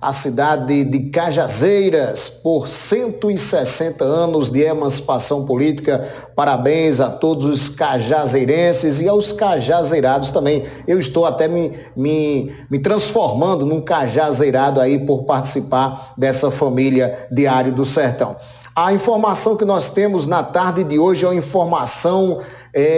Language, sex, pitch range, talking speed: Portuguese, male, 140-180 Hz, 130 wpm